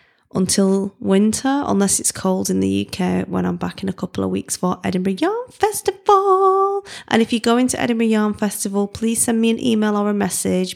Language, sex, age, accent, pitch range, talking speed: English, female, 20-39, British, 190-255 Hz, 200 wpm